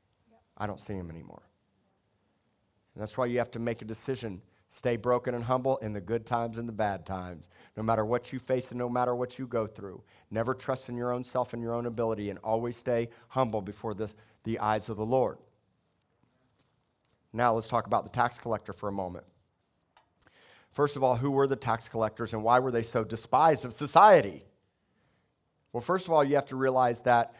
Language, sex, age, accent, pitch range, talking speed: English, male, 50-69, American, 110-125 Hz, 205 wpm